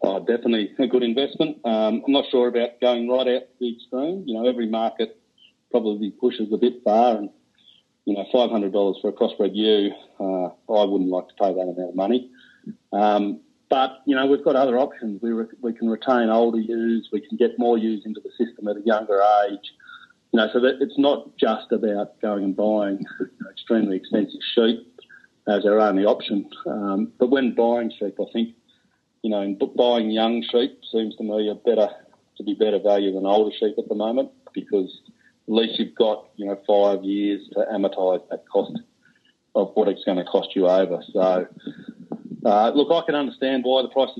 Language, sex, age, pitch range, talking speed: English, male, 40-59, 100-125 Hz, 195 wpm